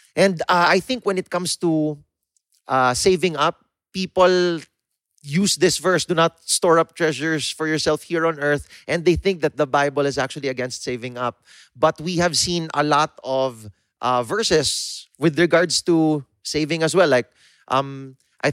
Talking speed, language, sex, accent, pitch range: 175 wpm, English, male, Filipino, 130-160 Hz